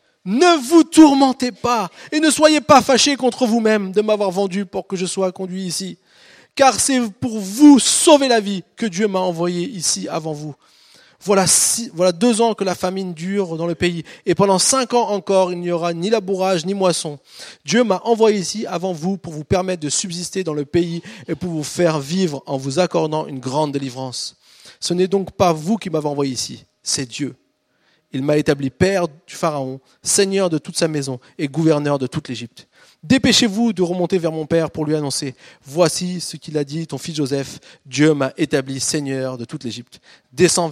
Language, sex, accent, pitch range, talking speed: French, male, French, 140-195 Hz, 200 wpm